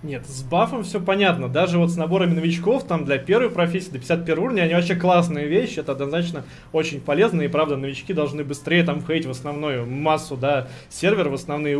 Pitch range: 145-185 Hz